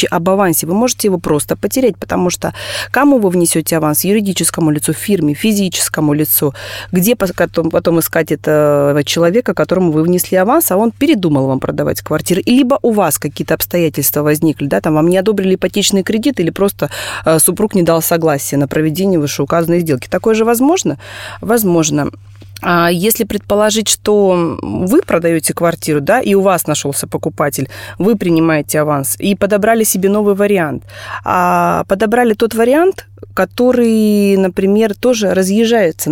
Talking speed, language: 145 wpm, Russian